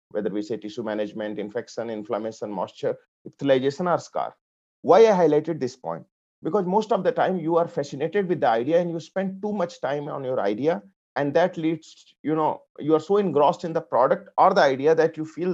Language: English